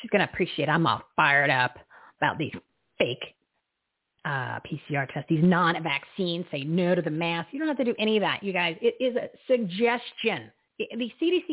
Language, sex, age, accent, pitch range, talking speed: English, female, 40-59, American, 175-230 Hz, 205 wpm